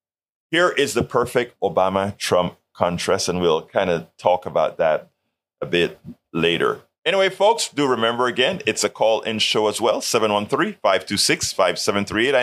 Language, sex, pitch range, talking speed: English, male, 110-140 Hz, 135 wpm